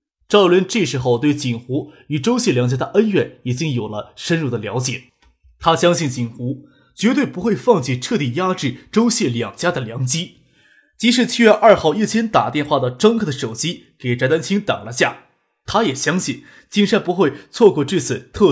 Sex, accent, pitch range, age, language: male, native, 125-200 Hz, 20-39, Chinese